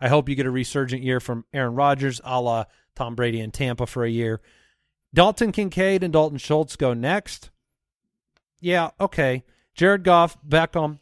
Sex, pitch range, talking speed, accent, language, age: male, 130-175 Hz, 170 wpm, American, English, 30-49